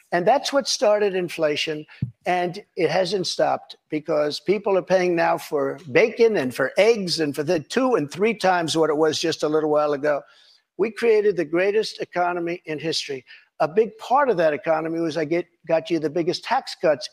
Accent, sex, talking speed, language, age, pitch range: American, male, 195 wpm, English, 60-79, 160-200 Hz